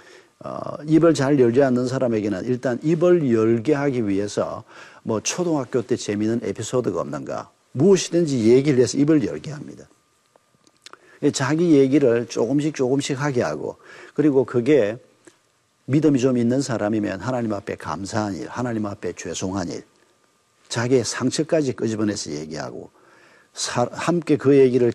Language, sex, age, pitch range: Korean, male, 50-69, 115-145 Hz